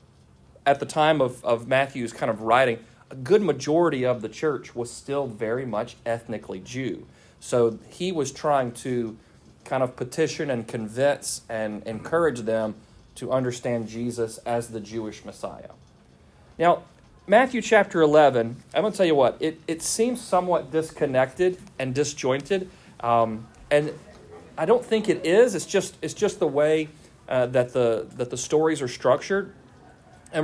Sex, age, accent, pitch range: male, 40-59, American, 115-155 Hz